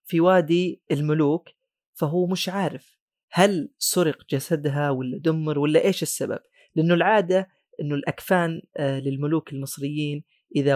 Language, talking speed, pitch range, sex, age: Arabic, 115 wpm, 145-185 Hz, female, 30-49